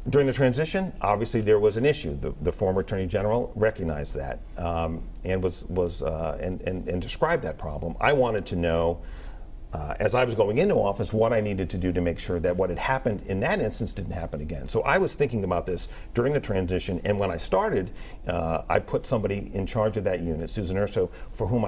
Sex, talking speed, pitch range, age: male, 225 wpm, 85-110 Hz, 50-69